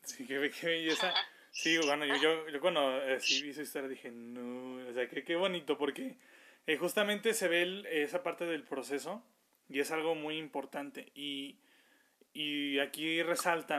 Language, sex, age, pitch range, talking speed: Spanish, male, 20-39, 140-175 Hz, 155 wpm